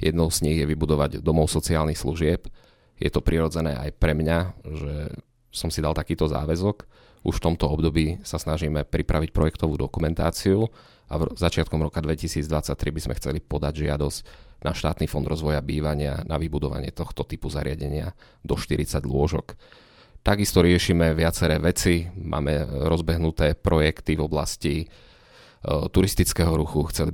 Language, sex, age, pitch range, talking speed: Slovak, male, 30-49, 75-85 Hz, 140 wpm